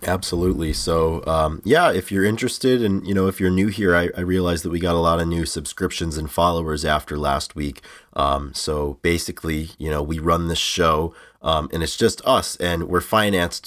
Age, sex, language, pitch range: 30-49, male, English, 80-90 Hz